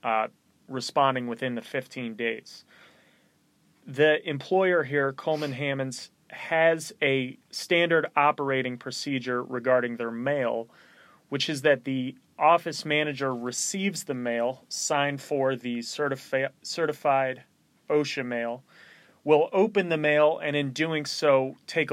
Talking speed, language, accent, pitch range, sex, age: 120 wpm, English, American, 130-160 Hz, male, 30-49